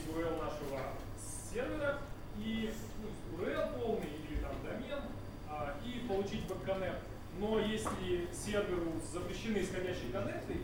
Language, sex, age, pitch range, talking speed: Russian, male, 20-39, 115-195 Hz, 115 wpm